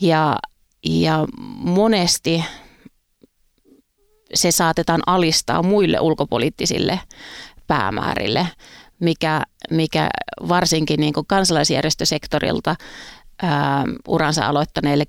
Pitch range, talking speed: 150-175 Hz, 70 wpm